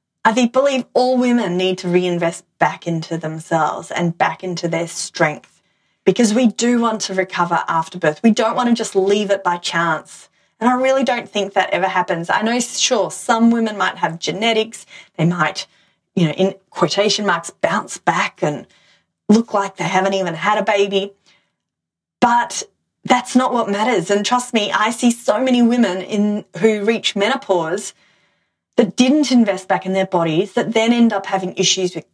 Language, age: English, 30-49